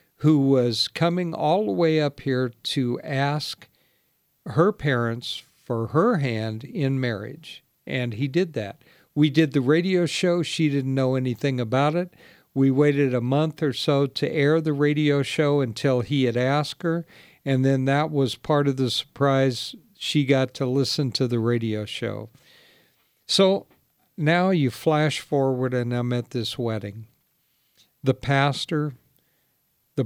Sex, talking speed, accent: male, 155 wpm, American